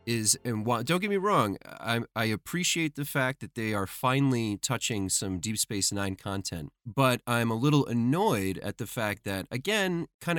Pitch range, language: 100-135 Hz, English